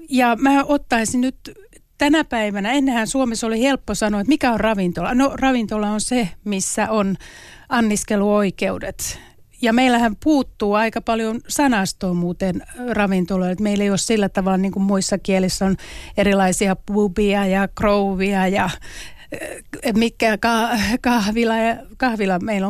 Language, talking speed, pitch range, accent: Finnish, 130 wpm, 195-250 Hz, native